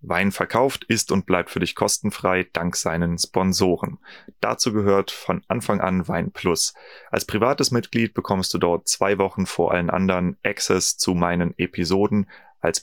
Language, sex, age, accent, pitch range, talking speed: German, male, 30-49, German, 95-110 Hz, 160 wpm